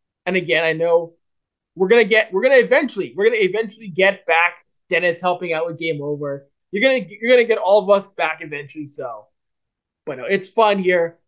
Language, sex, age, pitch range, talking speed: English, male, 20-39, 155-205 Hz, 205 wpm